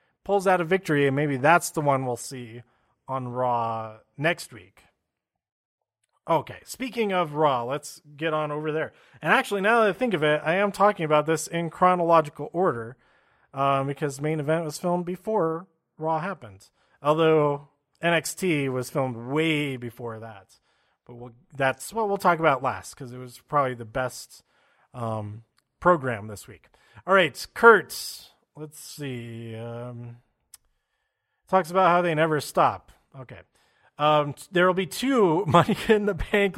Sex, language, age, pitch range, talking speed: male, English, 30-49, 130-185 Hz, 155 wpm